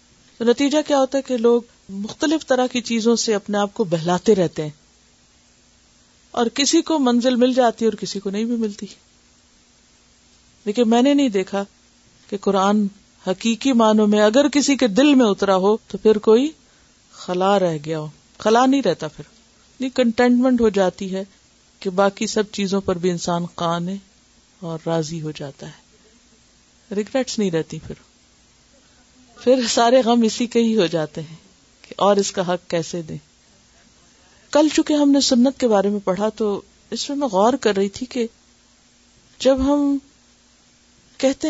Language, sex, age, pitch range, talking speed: Urdu, female, 50-69, 190-250 Hz, 170 wpm